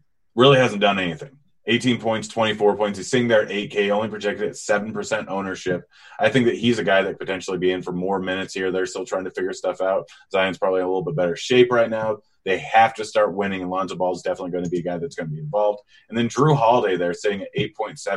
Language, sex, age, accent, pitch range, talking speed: English, male, 30-49, American, 95-120 Hz, 255 wpm